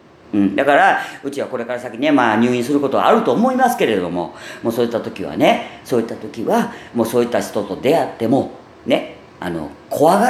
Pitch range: 110-175 Hz